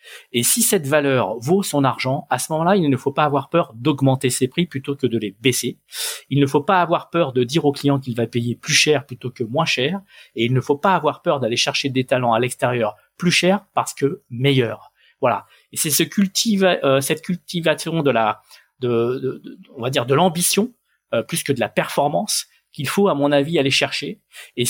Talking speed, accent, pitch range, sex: 230 wpm, French, 130-175 Hz, male